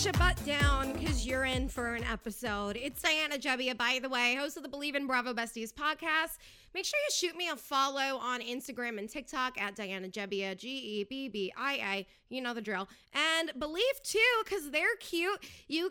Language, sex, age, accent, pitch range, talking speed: English, female, 20-39, American, 240-315 Hz, 185 wpm